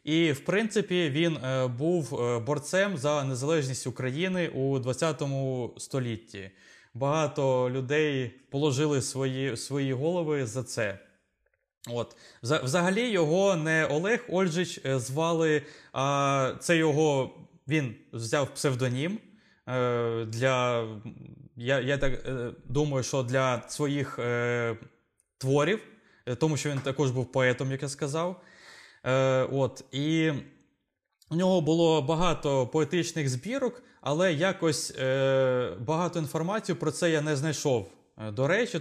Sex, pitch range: male, 130-165 Hz